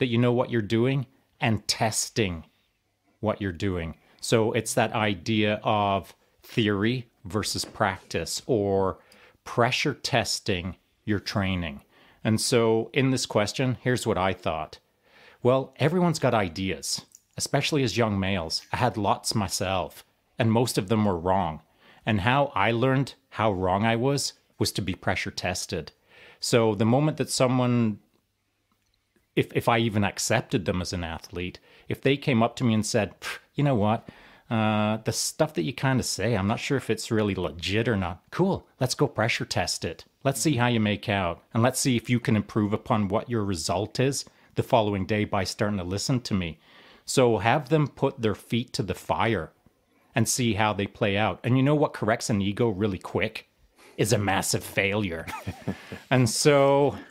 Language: English